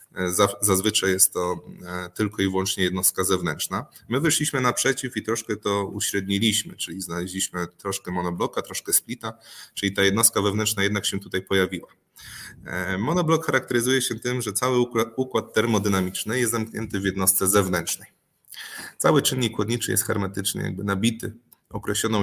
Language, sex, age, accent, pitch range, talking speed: Polish, male, 20-39, native, 95-120 Hz, 130 wpm